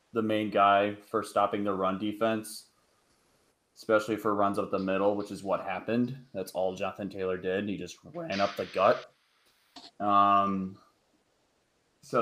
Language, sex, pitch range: English, male, 95-105 Hz